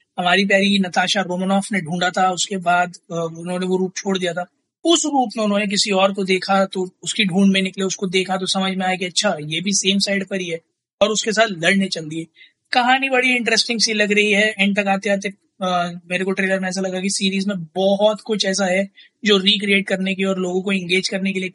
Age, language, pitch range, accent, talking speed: 20-39, Hindi, 185-215 Hz, native, 240 wpm